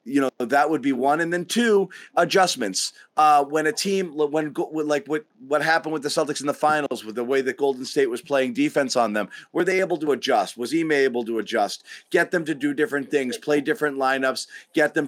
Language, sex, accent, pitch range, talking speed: English, male, American, 125-155 Hz, 225 wpm